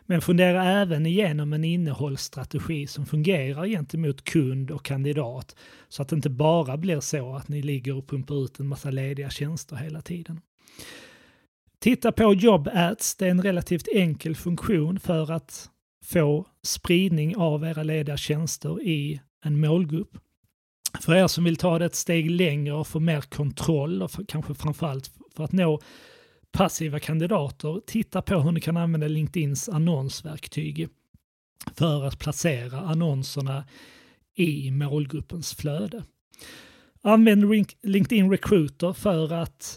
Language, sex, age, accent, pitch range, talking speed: Swedish, male, 30-49, native, 150-180 Hz, 140 wpm